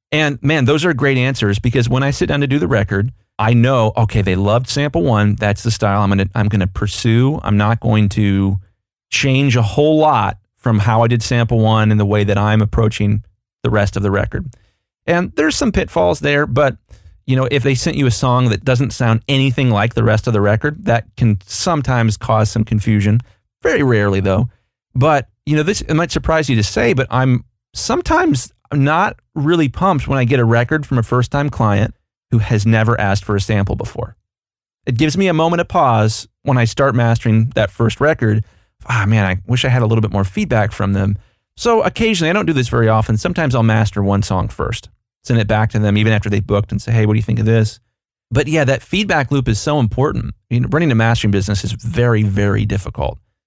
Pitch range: 105-135 Hz